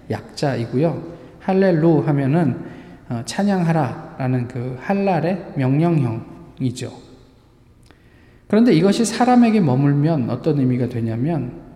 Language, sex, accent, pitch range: Korean, male, native, 125-170 Hz